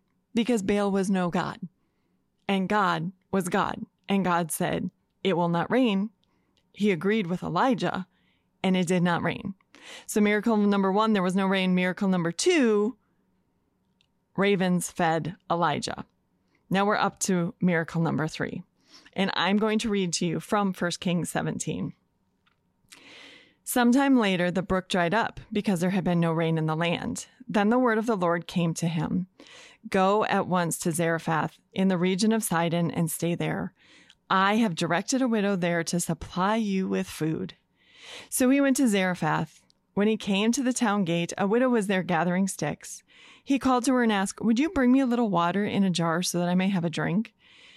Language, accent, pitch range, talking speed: English, American, 175-220 Hz, 185 wpm